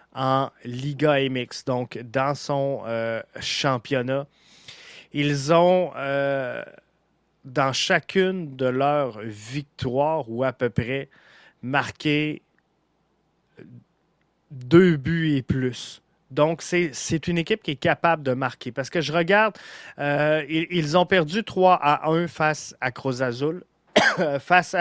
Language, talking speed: French, 125 wpm